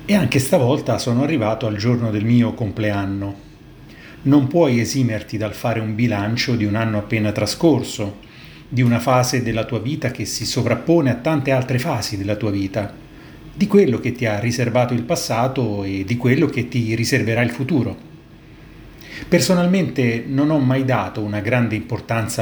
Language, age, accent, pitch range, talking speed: Italian, 30-49, native, 110-150 Hz, 165 wpm